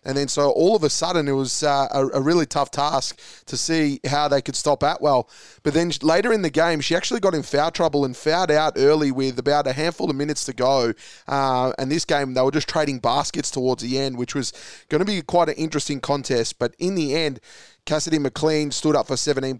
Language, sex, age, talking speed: English, male, 20-39, 235 wpm